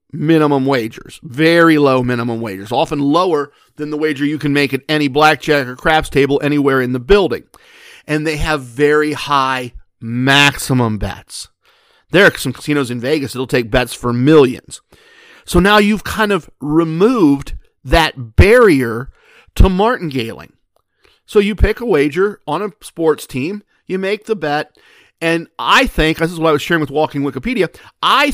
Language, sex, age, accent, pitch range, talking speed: English, male, 50-69, American, 140-180 Hz, 165 wpm